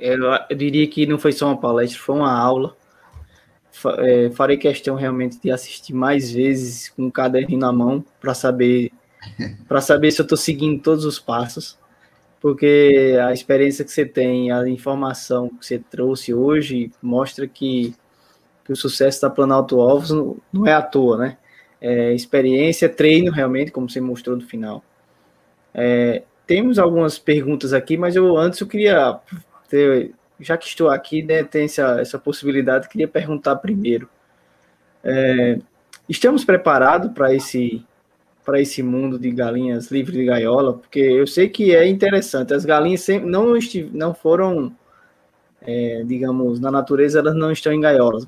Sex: male